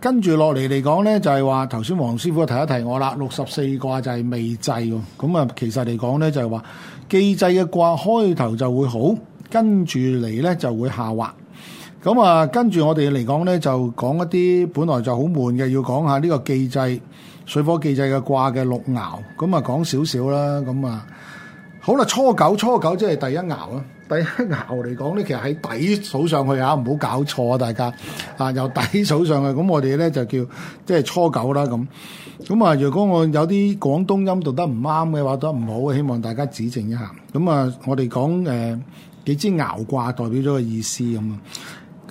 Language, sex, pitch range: Chinese, male, 130-175 Hz